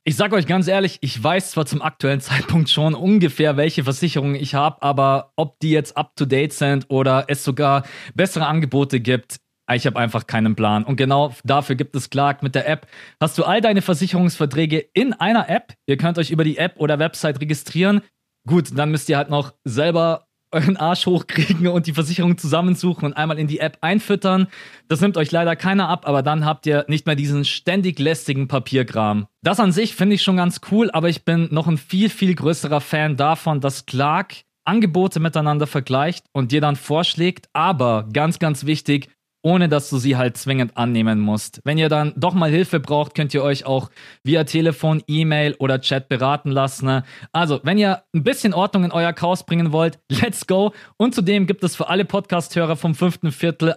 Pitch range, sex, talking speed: 140-175 Hz, male, 195 wpm